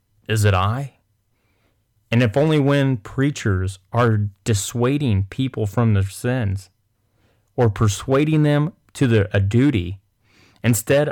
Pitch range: 100-120 Hz